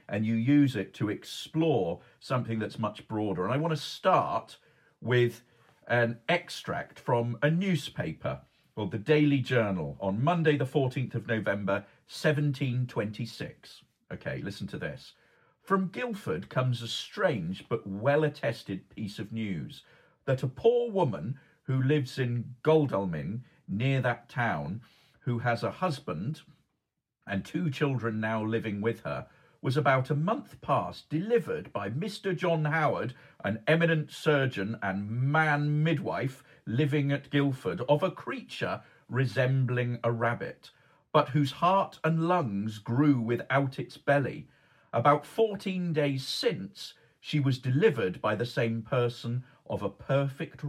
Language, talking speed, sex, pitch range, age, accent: English, 135 wpm, male, 120-155 Hz, 50-69, British